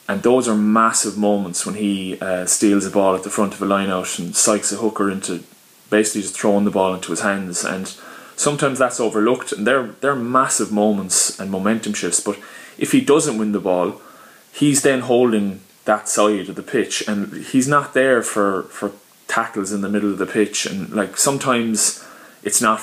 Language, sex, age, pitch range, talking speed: English, male, 20-39, 95-110 Hz, 195 wpm